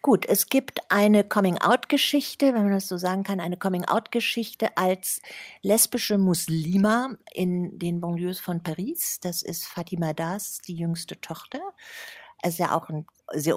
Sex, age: female, 50-69